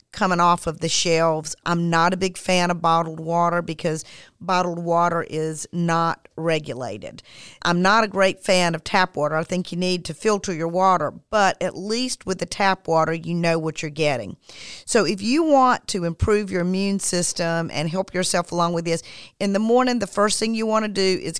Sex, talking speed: female, 205 wpm